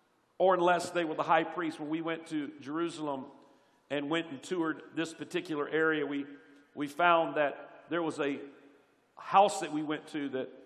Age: 50-69